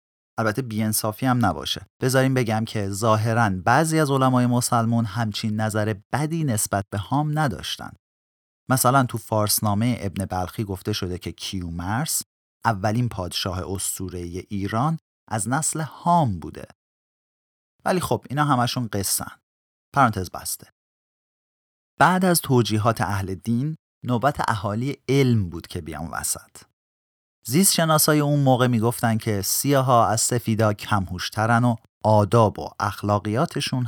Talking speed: 125 wpm